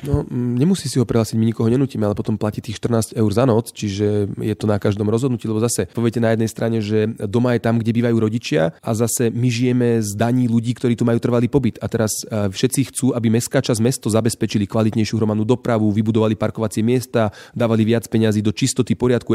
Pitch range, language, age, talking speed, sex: 110-125 Hz, Slovak, 30-49, 210 wpm, male